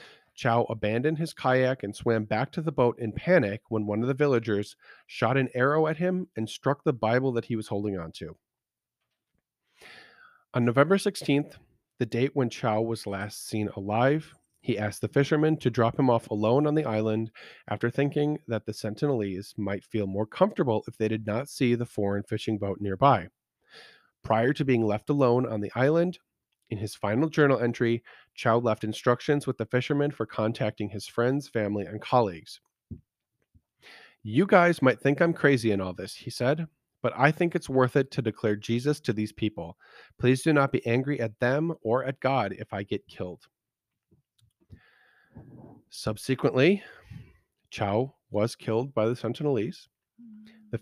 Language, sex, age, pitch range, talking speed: English, male, 40-59, 110-140 Hz, 170 wpm